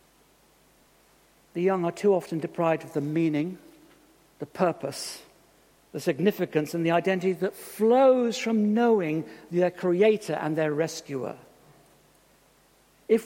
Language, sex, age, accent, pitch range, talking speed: English, male, 60-79, British, 180-235 Hz, 120 wpm